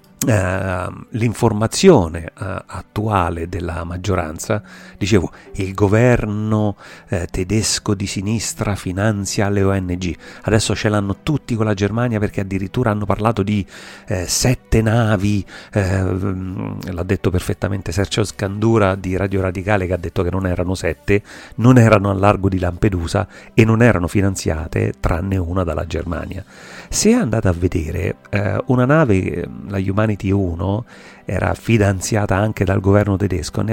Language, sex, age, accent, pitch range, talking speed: Italian, male, 40-59, native, 90-110 Hz, 140 wpm